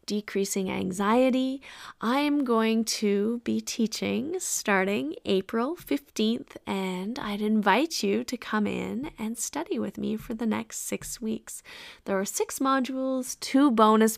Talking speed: 140 wpm